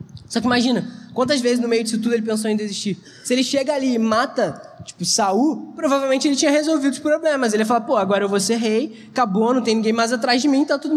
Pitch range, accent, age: 230-275 Hz, Brazilian, 20-39